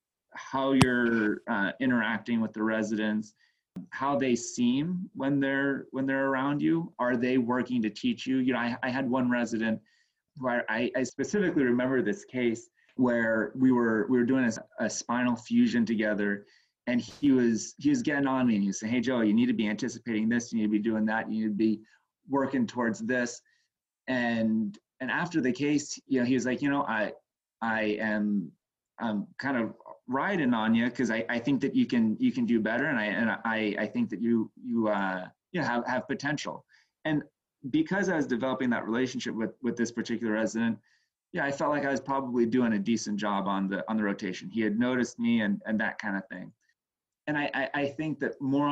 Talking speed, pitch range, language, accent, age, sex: 210 wpm, 110-130 Hz, English, American, 30-49, male